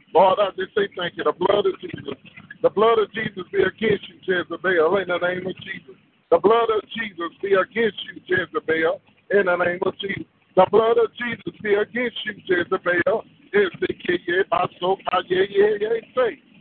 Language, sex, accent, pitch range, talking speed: English, male, American, 185-225 Hz, 175 wpm